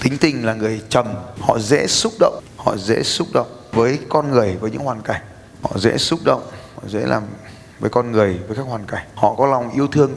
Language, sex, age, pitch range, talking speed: Vietnamese, male, 20-39, 110-130 Hz, 230 wpm